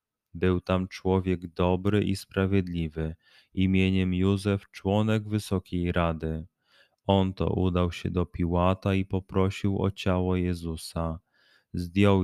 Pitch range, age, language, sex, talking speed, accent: 90-100 Hz, 20-39, Polish, male, 115 wpm, native